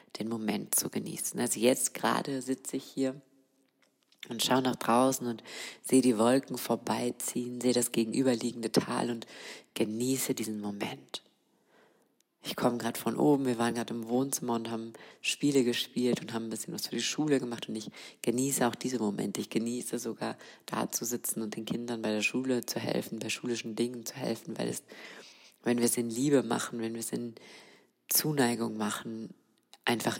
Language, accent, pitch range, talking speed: German, German, 115-130 Hz, 180 wpm